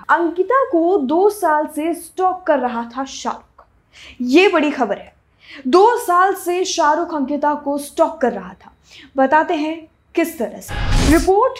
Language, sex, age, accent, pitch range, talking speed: Hindi, female, 20-39, native, 260-330 Hz, 155 wpm